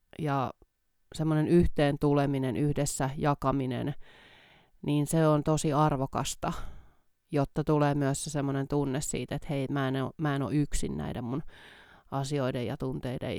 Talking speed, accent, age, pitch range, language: 130 wpm, native, 30-49, 140-165 Hz, Finnish